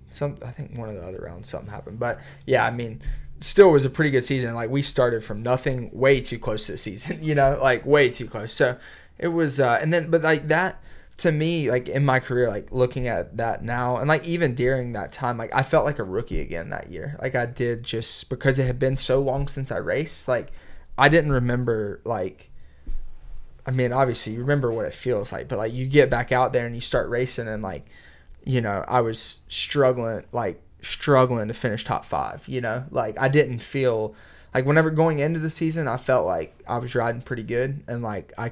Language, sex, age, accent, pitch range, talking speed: English, male, 20-39, American, 115-135 Hz, 230 wpm